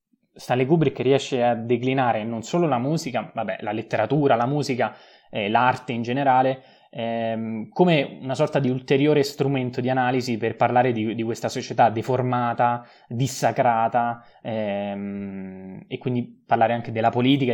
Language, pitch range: Italian, 115-140 Hz